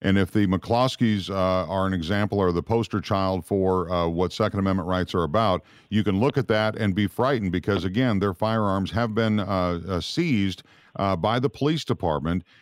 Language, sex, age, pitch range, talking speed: English, male, 50-69, 95-125 Hz, 195 wpm